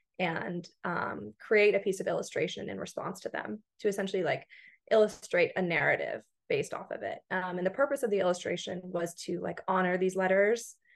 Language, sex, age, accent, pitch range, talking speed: English, female, 20-39, American, 180-230 Hz, 185 wpm